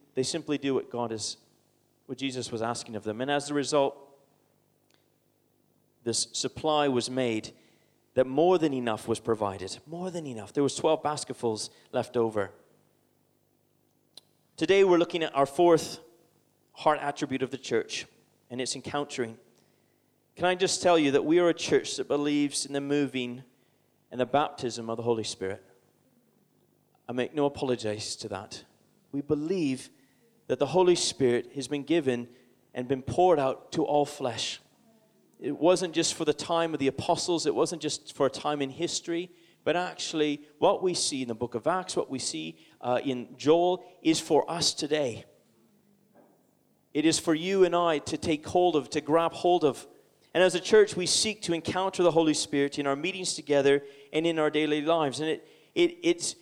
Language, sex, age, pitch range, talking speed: English, male, 30-49, 125-165 Hz, 180 wpm